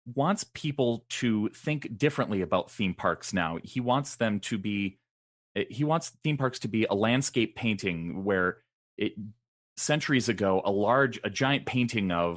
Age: 30-49